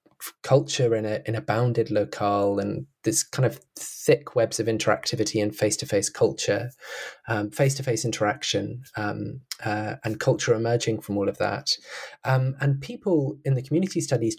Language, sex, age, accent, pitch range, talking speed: English, male, 20-39, British, 115-140 Hz, 155 wpm